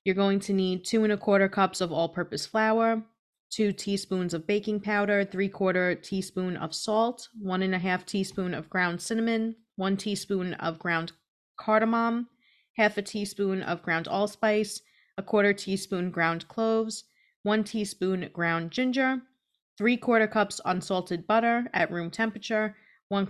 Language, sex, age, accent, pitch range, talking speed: English, female, 30-49, American, 175-210 Hz, 155 wpm